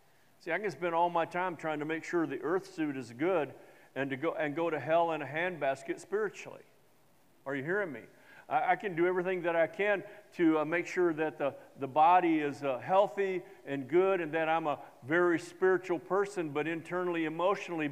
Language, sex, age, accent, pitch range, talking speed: English, male, 50-69, American, 155-195 Hz, 210 wpm